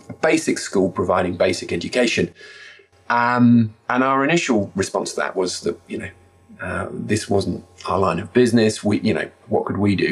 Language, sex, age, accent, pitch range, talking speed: English, male, 30-49, British, 90-120 Hz, 180 wpm